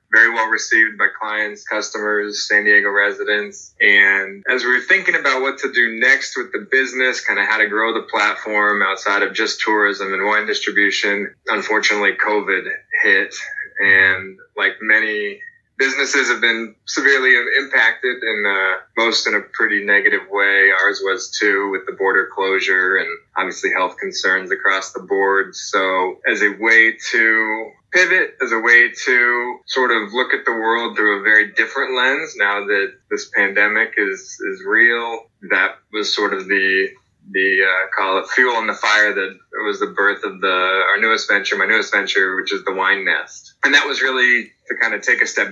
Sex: male